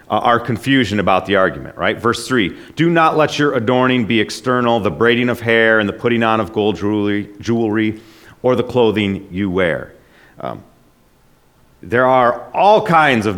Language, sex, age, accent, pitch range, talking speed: English, male, 40-59, American, 110-160 Hz, 170 wpm